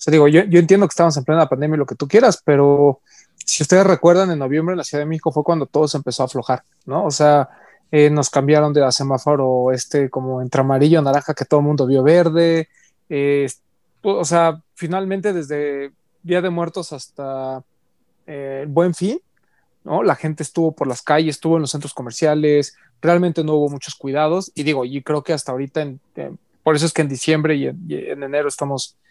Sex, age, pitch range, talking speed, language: male, 20-39, 145-180 Hz, 215 wpm, Spanish